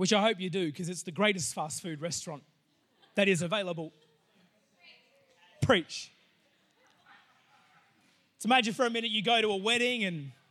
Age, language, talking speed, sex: 20-39, English, 155 wpm, male